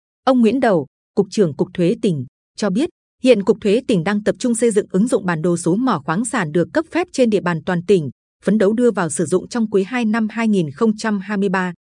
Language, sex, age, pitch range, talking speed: Vietnamese, female, 20-39, 180-230 Hz, 230 wpm